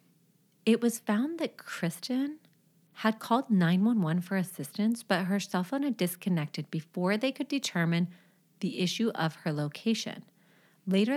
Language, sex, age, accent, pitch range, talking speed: English, female, 30-49, American, 170-210 Hz, 140 wpm